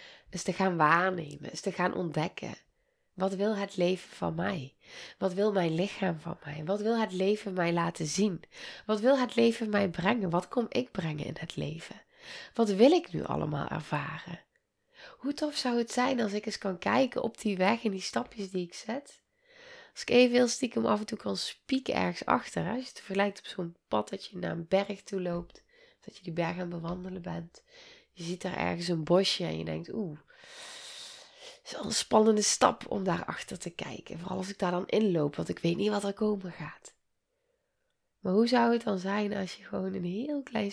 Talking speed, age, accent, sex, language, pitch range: 215 wpm, 20-39, Dutch, female, Dutch, 180-265 Hz